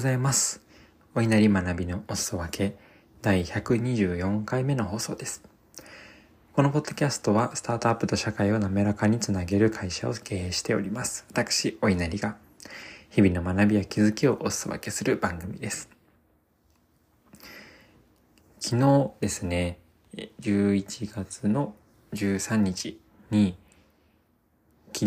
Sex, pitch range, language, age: male, 95-110 Hz, Japanese, 20-39